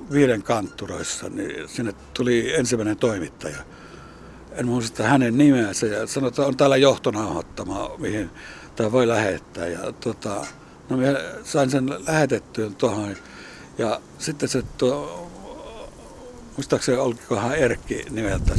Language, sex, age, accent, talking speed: Finnish, male, 60-79, native, 120 wpm